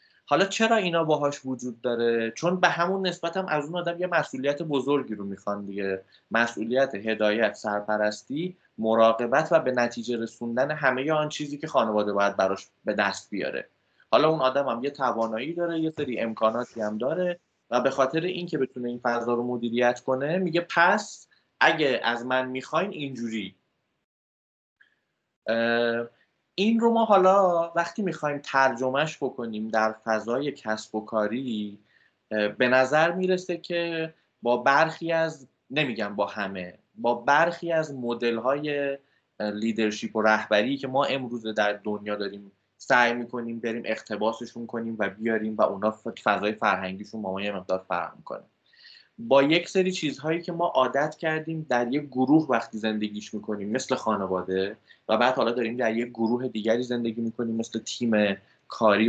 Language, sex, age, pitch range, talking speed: Persian, male, 20-39, 110-150 Hz, 150 wpm